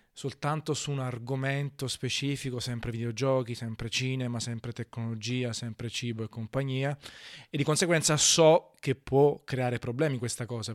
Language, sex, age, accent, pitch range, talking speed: Italian, male, 20-39, native, 120-140 Hz, 140 wpm